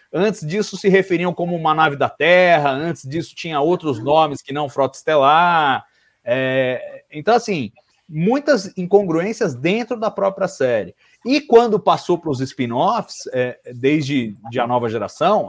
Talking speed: 140 wpm